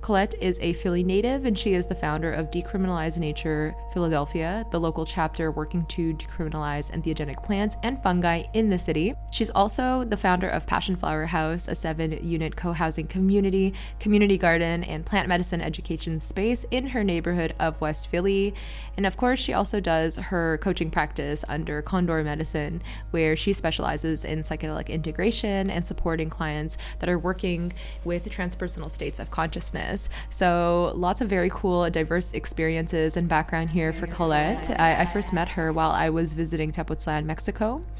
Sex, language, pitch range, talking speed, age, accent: female, English, 160-185 Hz, 165 wpm, 20-39, American